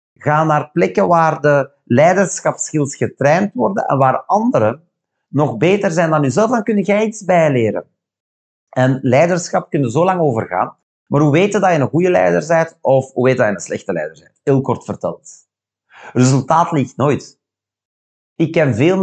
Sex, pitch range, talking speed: male, 120-165 Hz, 175 wpm